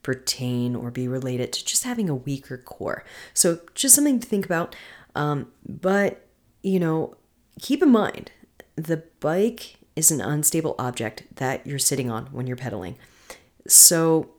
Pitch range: 130-165 Hz